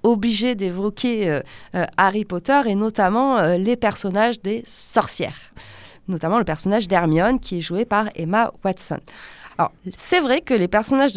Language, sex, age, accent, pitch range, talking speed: French, female, 20-39, French, 175-240 Hz, 155 wpm